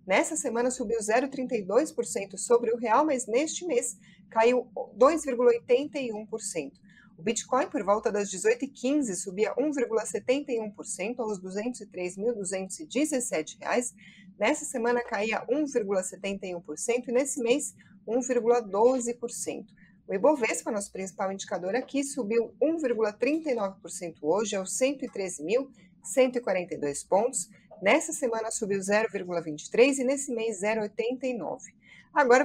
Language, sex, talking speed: Portuguese, female, 95 wpm